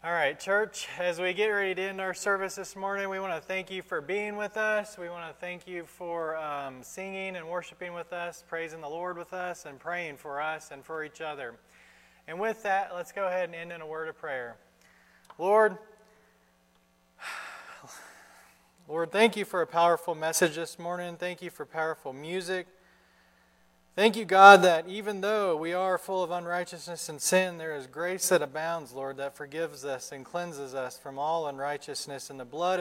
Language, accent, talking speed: English, American, 195 wpm